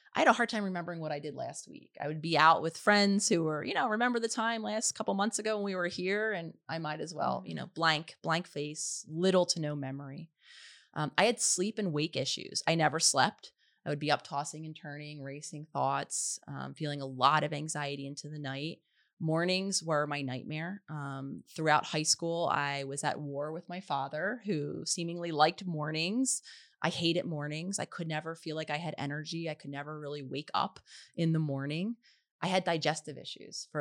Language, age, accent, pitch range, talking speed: English, 30-49, American, 150-185 Hz, 210 wpm